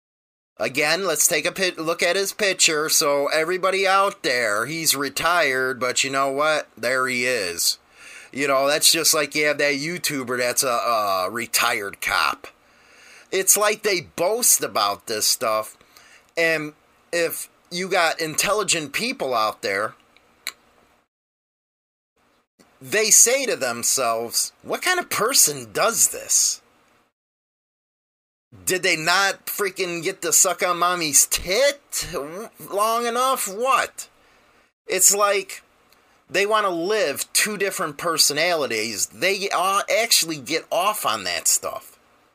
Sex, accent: male, American